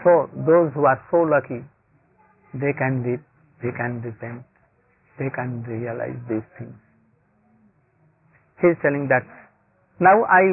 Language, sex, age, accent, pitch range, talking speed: English, male, 50-69, Indian, 125-180 Hz, 130 wpm